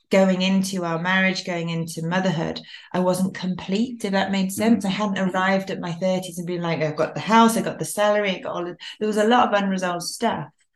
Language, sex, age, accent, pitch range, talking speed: English, female, 30-49, British, 165-195 Hz, 235 wpm